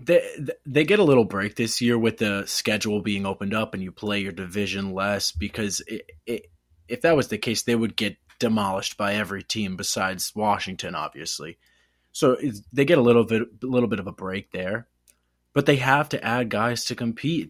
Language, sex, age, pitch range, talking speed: English, male, 20-39, 100-135 Hz, 190 wpm